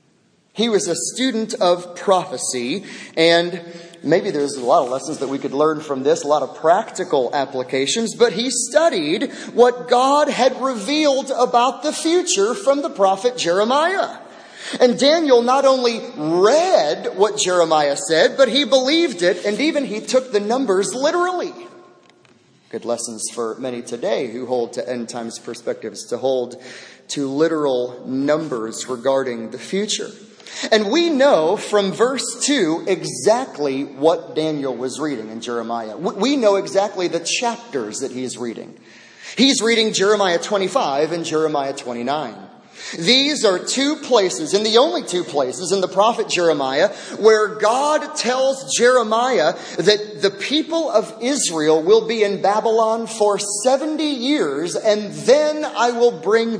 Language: English